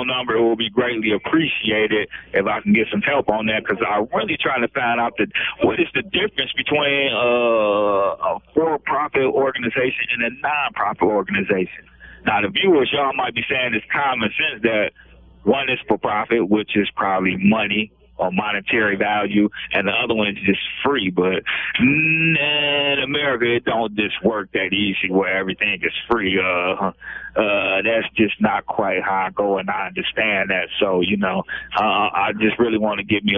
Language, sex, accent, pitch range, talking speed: English, male, American, 100-115 Hz, 175 wpm